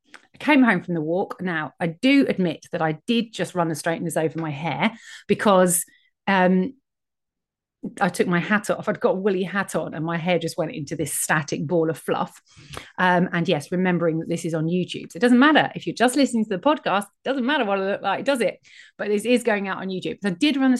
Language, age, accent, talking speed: English, 30-49, British, 245 wpm